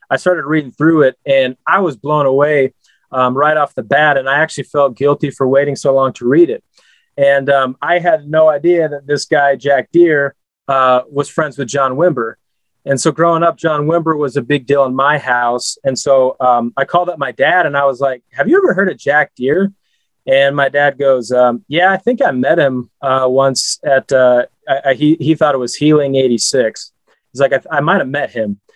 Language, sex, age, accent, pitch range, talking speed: English, male, 30-49, American, 130-155 Hz, 220 wpm